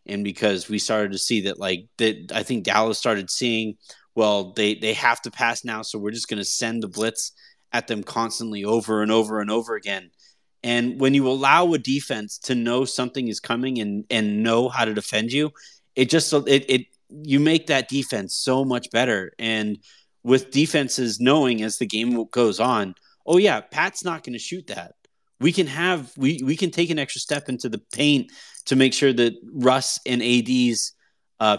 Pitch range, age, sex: 110-135 Hz, 30-49, male